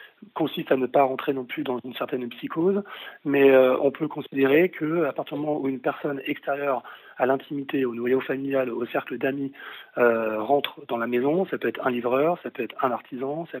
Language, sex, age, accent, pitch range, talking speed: French, male, 40-59, French, 120-145 Hz, 205 wpm